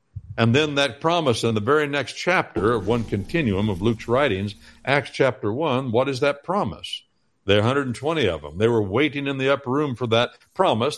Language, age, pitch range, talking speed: English, 60-79, 105-135 Hz, 200 wpm